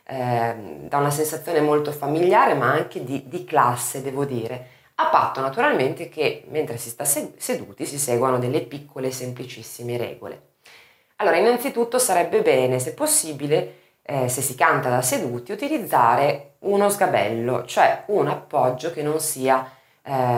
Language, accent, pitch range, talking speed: Italian, native, 125-150 Hz, 140 wpm